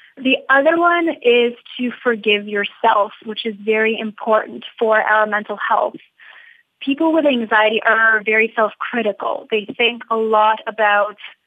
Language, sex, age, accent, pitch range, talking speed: English, female, 20-39, American, 215-250 Hz, 135 wpm